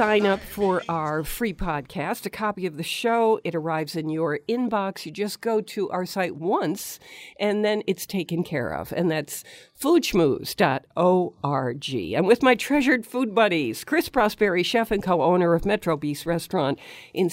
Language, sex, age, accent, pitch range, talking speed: English, female, 50-69, American, 160-215 Hz, 165 wpm